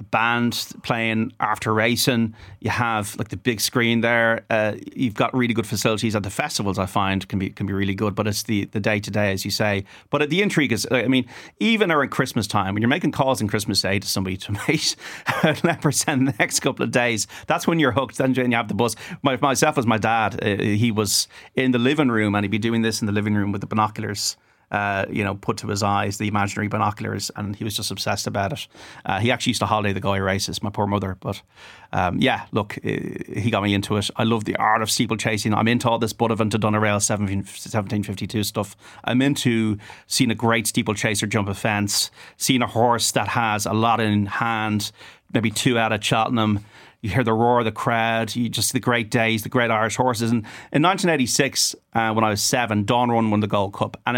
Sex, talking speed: male, 230 wpm